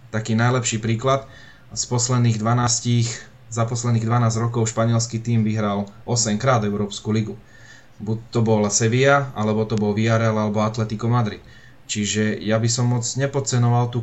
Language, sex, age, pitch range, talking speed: Slovak, male, 20-39, 110-120 Hz, 150 wpm